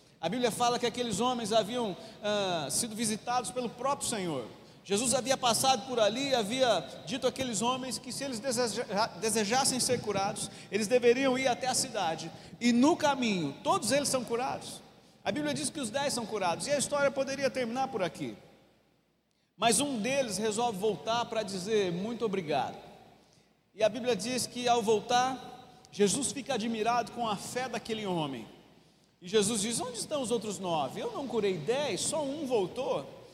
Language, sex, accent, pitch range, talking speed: Portuguese, male, Brazilian, 210-270 Hz, 175 wpm